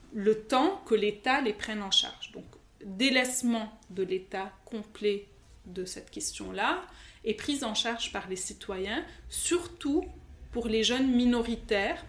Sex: female